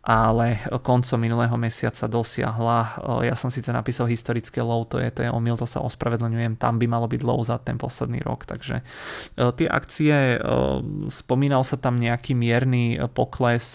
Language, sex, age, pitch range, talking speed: Czech, male, 30-49, 115-125 Hz, 160 wpm